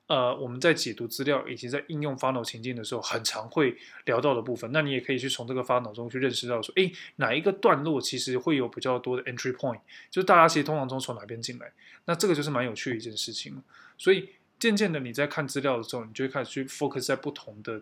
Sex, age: male, 20-39